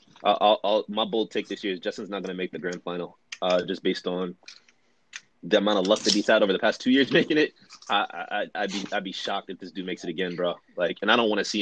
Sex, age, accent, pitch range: male, 20-39, American, 95-105 Hz